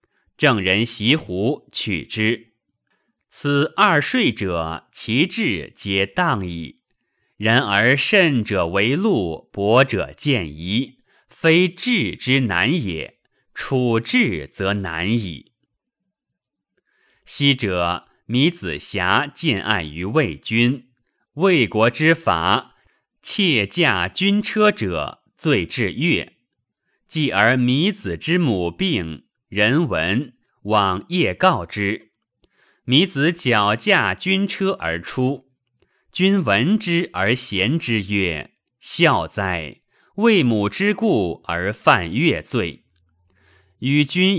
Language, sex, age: Chinese, male, 30-49